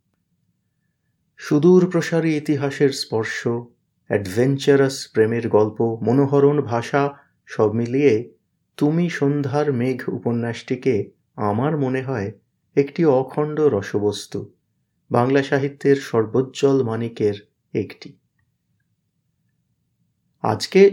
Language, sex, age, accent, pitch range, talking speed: Bengali, male, 30-49, native, 115-150 Hz, 75 wpm